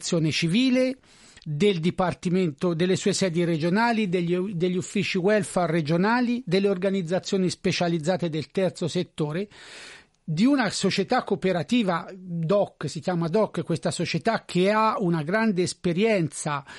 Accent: native